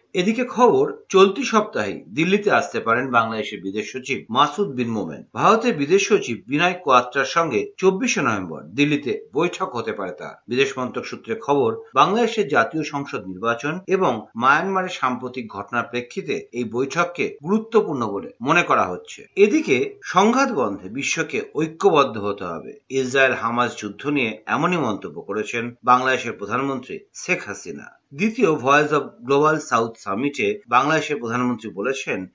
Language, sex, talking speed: Bengali, male, 135 wpm